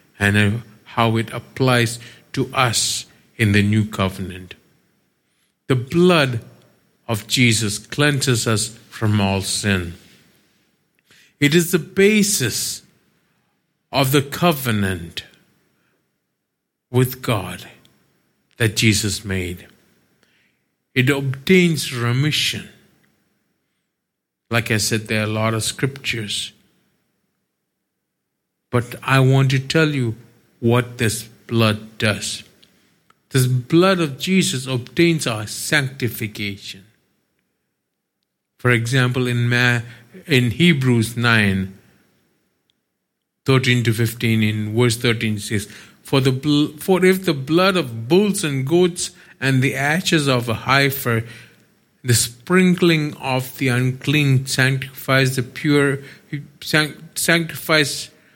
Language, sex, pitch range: English, male, 110-145 Hz